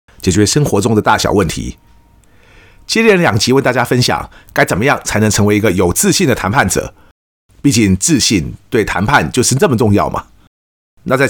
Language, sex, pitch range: Chinese, male, 95-135 Hz